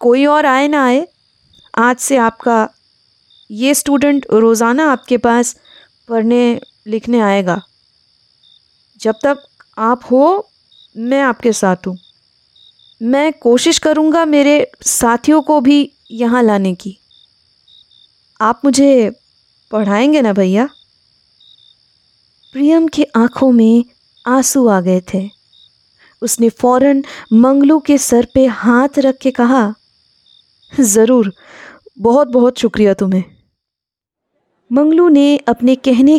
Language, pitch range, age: Hindi, 210-280 Hz, 20-39